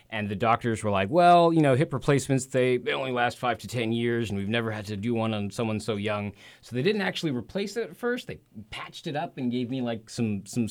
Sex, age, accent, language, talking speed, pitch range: male, 30-49, American, English, 265 wpm, 95-125 Hz